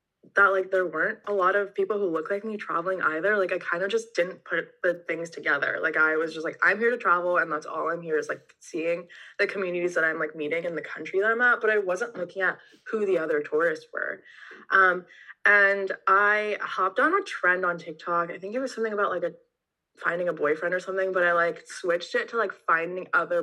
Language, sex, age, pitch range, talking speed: English, female, 20-39, 165-205 Hz, 240 wpm